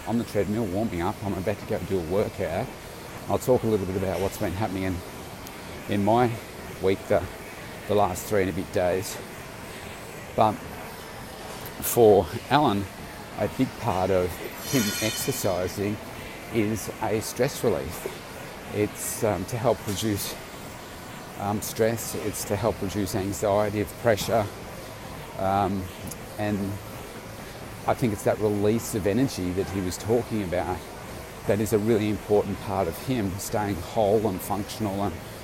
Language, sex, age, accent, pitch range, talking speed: English, male, 40-59, Australian, 95-110 Hz, 145 wpm